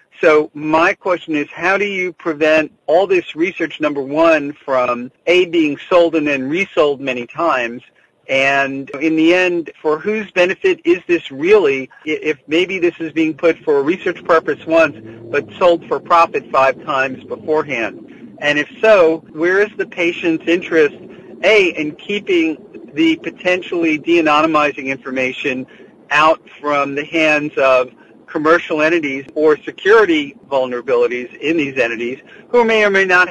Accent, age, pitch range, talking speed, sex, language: American, 50-69, 150-210 Hz, 150 wpm, male, English